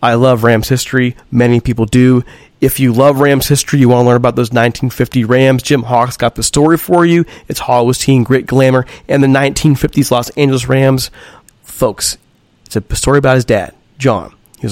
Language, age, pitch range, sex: English, 30-49, 120-145 Hz, male